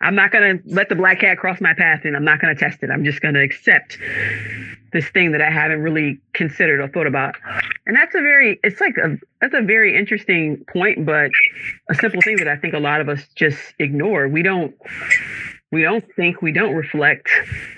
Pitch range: 140-175 Hz